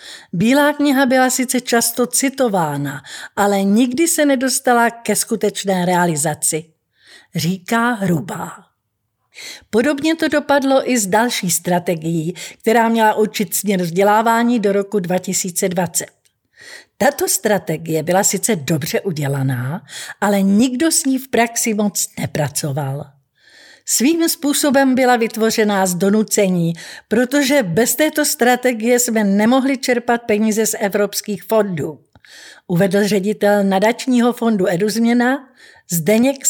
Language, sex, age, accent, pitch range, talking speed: Czech, female, 50-69, native, 185-255 Hz, 110 wpm